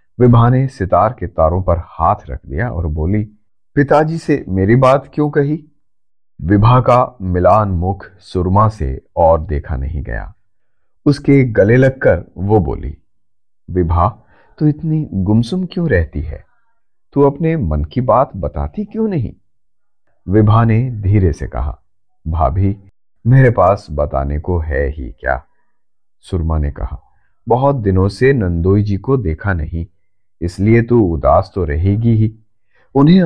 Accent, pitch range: native, 85-125 Hz